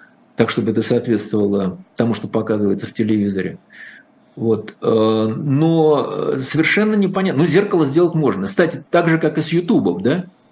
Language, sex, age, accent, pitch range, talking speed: Russian, male, 50-69, native, 140-195 Hz, 145 wpm